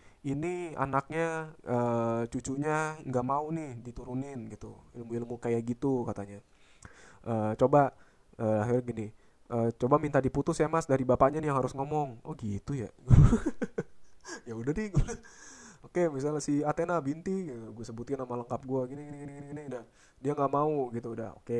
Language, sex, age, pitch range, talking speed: Indonesian, male, 20-39, 120-145 Hz, 160 wpm